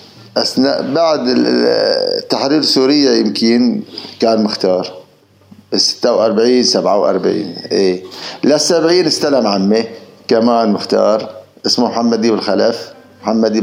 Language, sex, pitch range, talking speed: Arabic, male, 115-165 Hz, 95 wpm